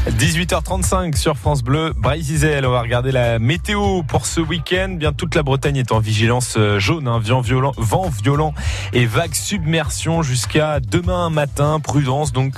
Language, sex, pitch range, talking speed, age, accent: French, male, 115-145 Hz, 165 wpm, 20-39, French